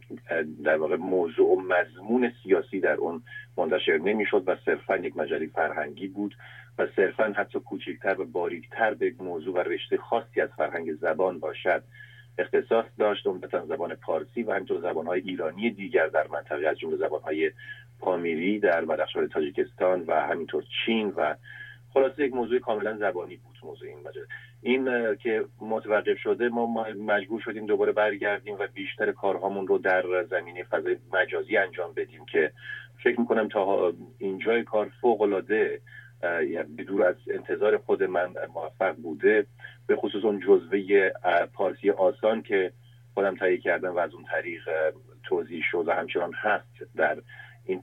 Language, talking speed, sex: English, 150 wpm, male